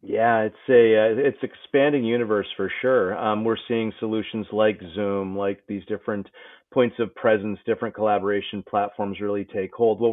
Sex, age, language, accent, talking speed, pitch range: male, 40-59, English, American, 165 wpm, 105-135 Hz